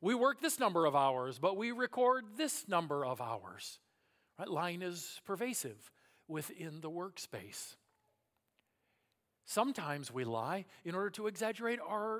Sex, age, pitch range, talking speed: male, 50-69, 130-200 Hz, 135 wpm